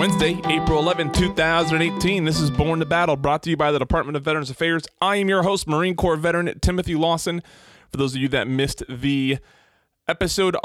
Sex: male